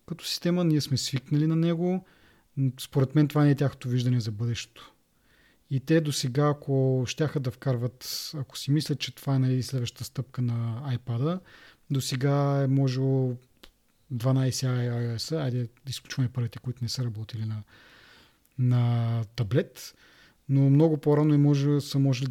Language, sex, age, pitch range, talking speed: Bulgarian, male, 30-49, 125-145 Hz, 155 wpm